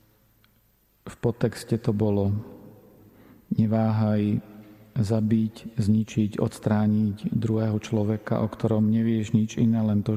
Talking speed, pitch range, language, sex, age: 100 wpm, 105-115 Hz, Slovak, male, 40-59